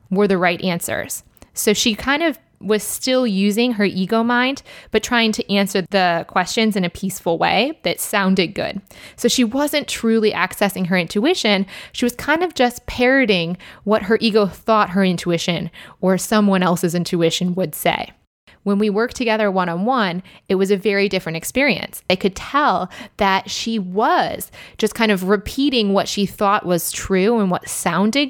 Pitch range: 185-230 Hz